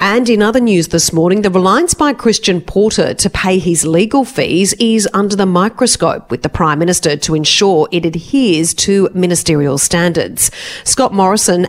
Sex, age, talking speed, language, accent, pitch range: female, 40-59, 170 wpm, English, Australian, 160-200 Hz